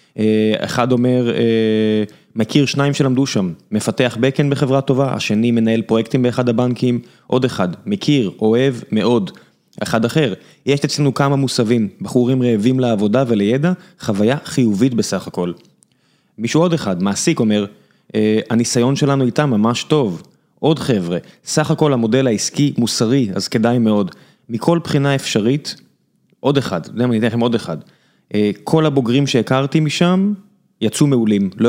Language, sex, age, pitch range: Hebrew, male, 20-39, 115-145 Hz